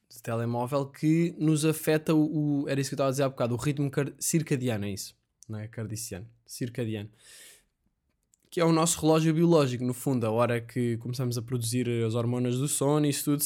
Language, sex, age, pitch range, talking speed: Portuguese, male, 20-39, 125-155 Hz, 195 wpm